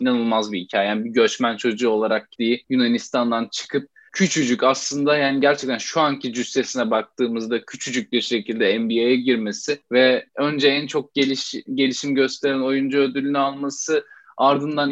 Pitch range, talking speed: 125-145 Hz, 140 wpm